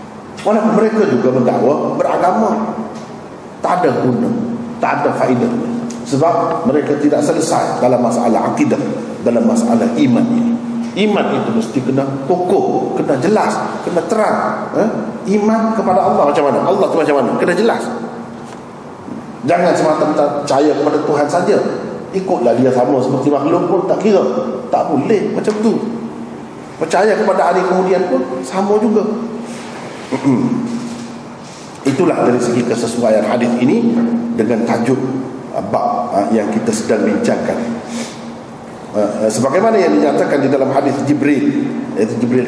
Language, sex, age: Malay, male, 50-69